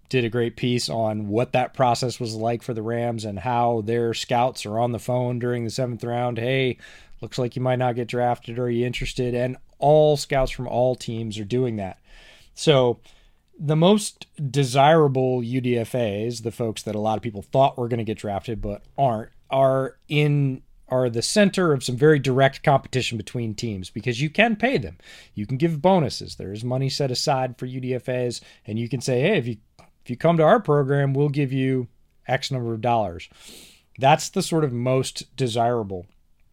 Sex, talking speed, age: male, 195 wpm, 30-49